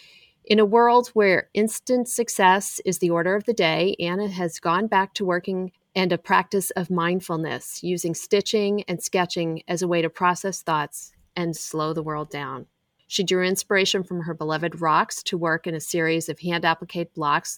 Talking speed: 185 wpm